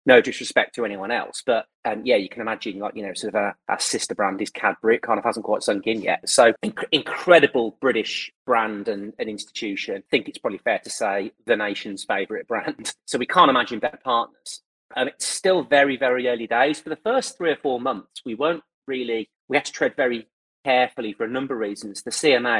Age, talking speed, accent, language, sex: 30-49, 225 wpm, British, English, male